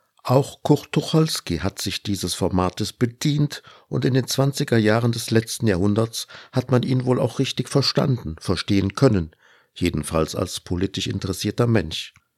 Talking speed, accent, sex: 145 wpm, German, male